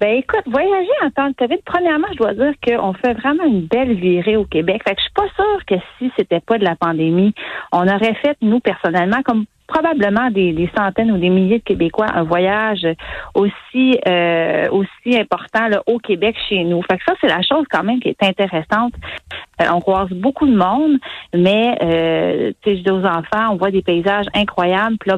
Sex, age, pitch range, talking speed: female, 40-59, 175-230 Hz, 205 wpm